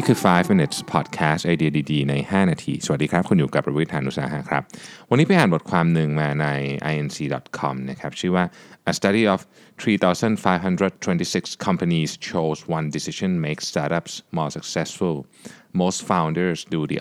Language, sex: Thai, male